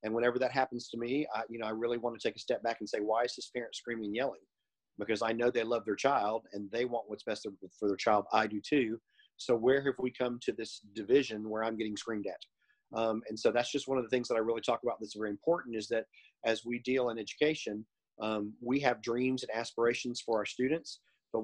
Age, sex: 40-59, male